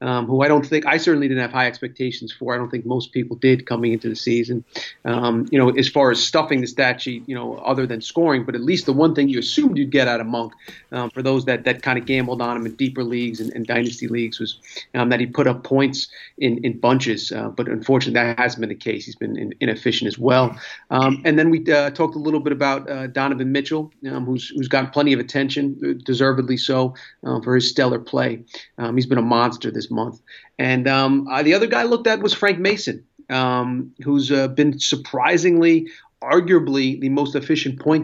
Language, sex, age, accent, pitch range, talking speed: English, male, 40-59, American, 125-145 Hz, 230 wpm